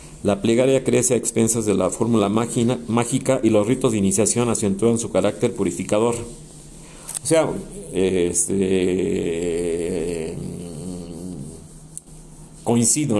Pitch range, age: 100-125 Hz, 50-69